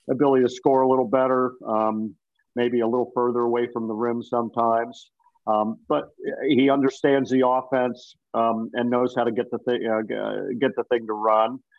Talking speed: 185 wpm